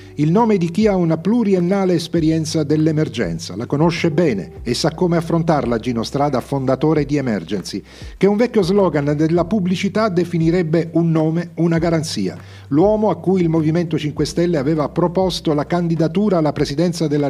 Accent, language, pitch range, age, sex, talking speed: native, Italian, 145-185 Hz, 40-59, male, 160 wpm